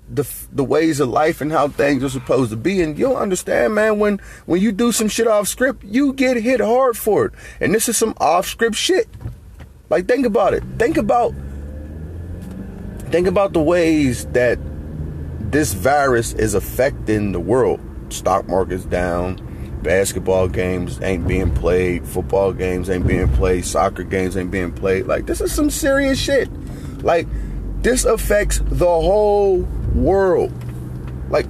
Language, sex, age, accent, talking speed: English, male, 30-49, American, 160 wpm